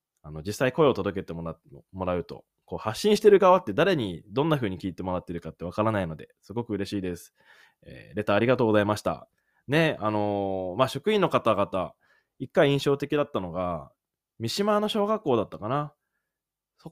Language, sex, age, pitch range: Japanese, male, 20-39, 90-140 Hz